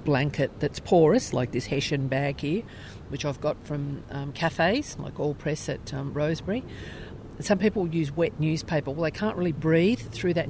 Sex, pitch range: female, 100-165 Hz